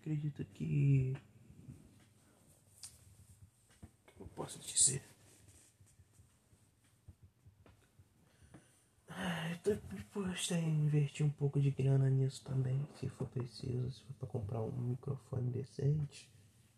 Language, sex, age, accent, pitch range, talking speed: Portuguese, male, 20-39, Brazilian, 110-145 Hz, 100 wpm